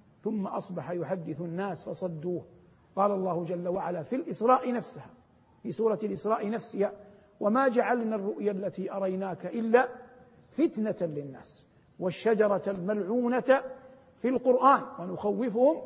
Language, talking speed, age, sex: Arabic, 110 wpm, 50-69, male